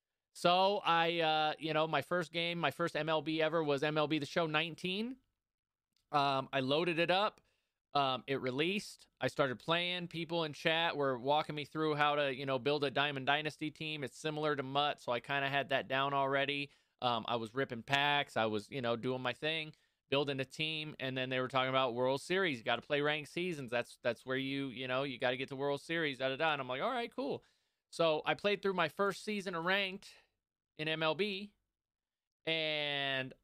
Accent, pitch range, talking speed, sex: American, 135-175 Hz, 210 wpm, male